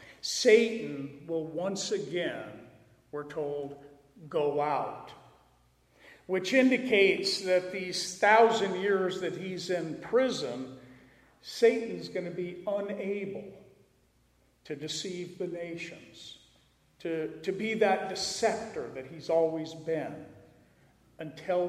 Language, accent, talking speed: English, American, 100 wpm